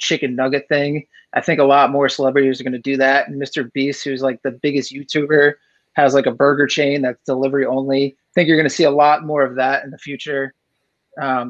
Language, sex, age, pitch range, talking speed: English, male, 30-49, 135-155 Hz, 225 wpm